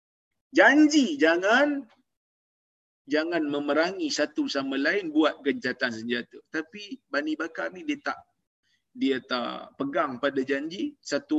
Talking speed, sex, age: 115 wpm, male, 30-49